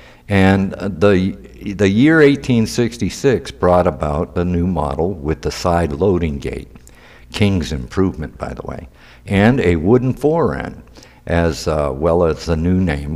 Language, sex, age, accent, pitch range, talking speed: English, male, 60-79, American, 75-100 Hz, 140 wpm